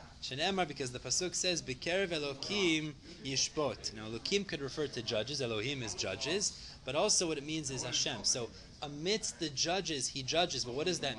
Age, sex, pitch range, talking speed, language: 30-49, male, 130-175 Hz, 175 wpm, English